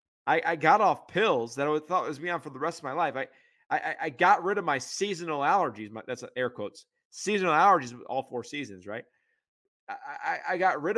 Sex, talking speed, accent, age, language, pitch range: male, 235 wpm, American, 30-49, English, 100-155 Hz